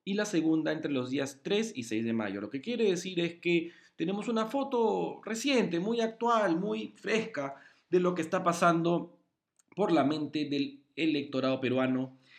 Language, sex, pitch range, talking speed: Spanish, male, 135-190 Hz, 175 wpm